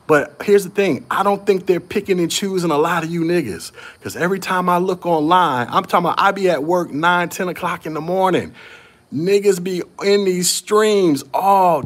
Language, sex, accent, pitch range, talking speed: English, male, American, 150-190 Hz, 205 wpm